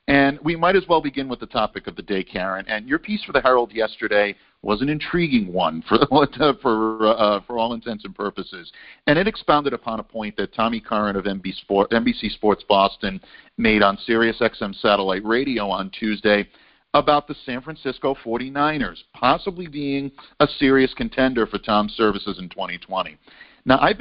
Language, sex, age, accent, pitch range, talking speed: English, male, 50-69, American, 105-140 Hz, 180 wpm